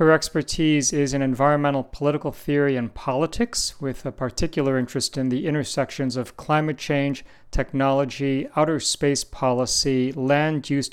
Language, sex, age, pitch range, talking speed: English, male, 40-59, 130-155 Hz, 135 wpm